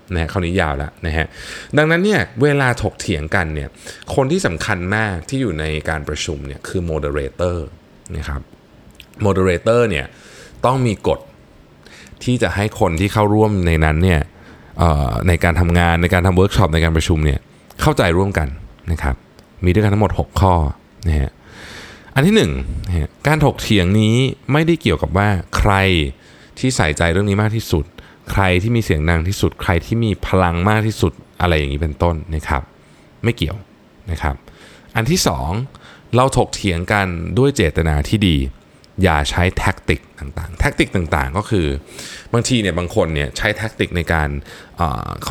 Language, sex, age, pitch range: Thai, male, 20-39, 80-110 Hz